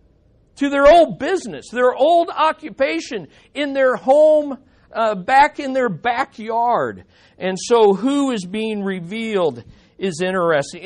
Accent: American